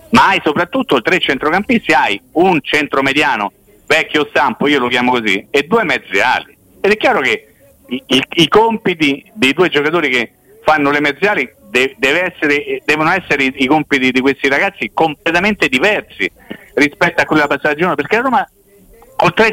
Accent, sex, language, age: native, male, Italian, 50-69